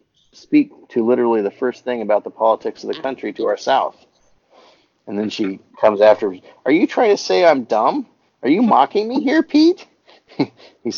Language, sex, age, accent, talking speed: English, male, 40-59, American, 185 wpm